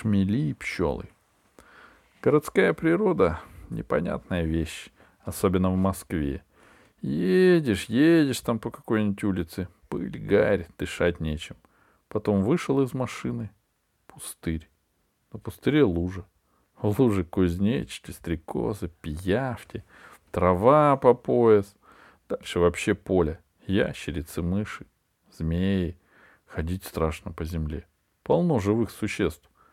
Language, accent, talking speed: Russian, native, 95 wpm